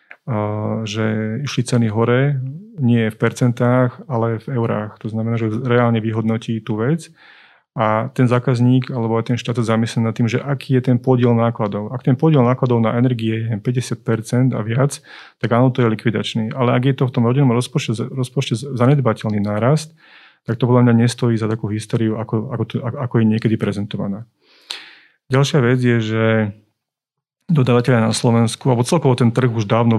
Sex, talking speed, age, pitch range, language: male, 175 wpm, 30-49, 110-130 Hz, Slovak